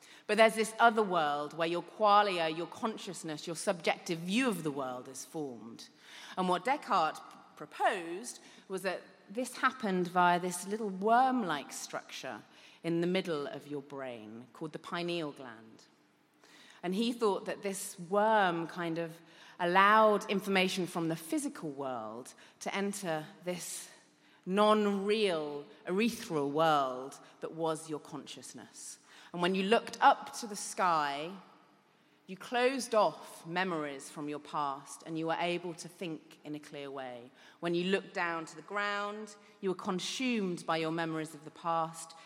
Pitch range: 150-200 Hz